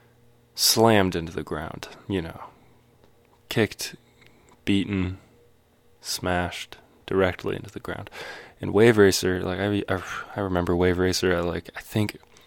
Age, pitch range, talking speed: 20-39, 85-105 Hz, 125 wpm